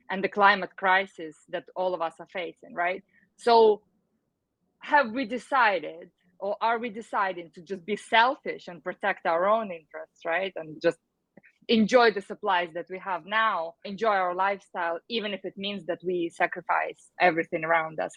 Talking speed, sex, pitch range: 170 wpm, female, 170-210 Hz